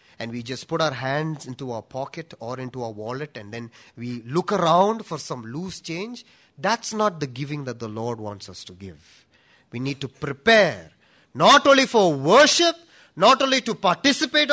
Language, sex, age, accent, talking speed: English, male, 30-49, Indian, 185 wpm